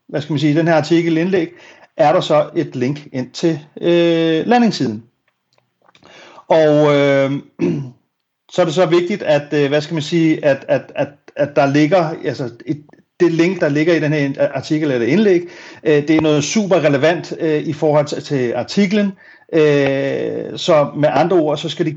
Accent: native